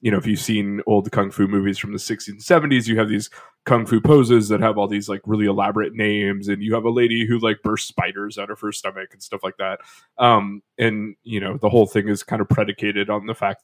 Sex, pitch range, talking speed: male, 105-120 Hz, 260 wpm